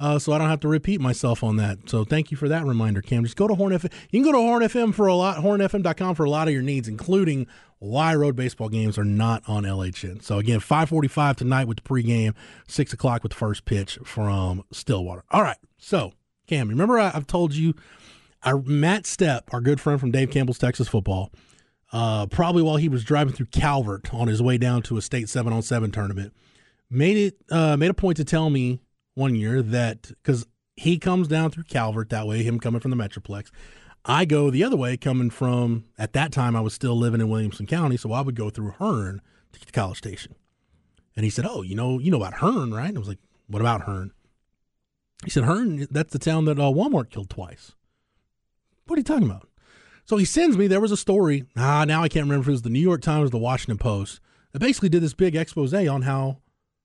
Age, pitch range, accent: 30-49, 115-160 Hz, American